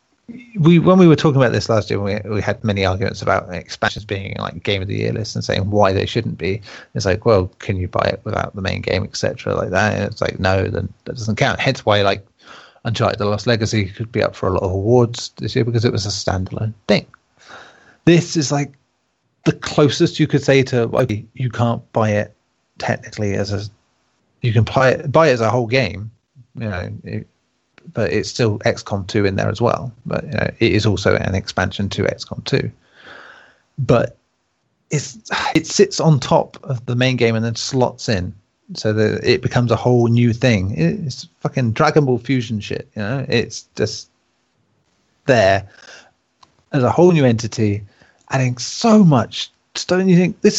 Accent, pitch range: British, 105-135 Hz